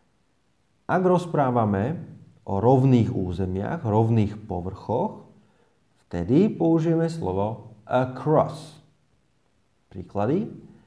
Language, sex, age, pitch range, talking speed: Slovak, male, 30-49, 95-140 Hz, 65 wpm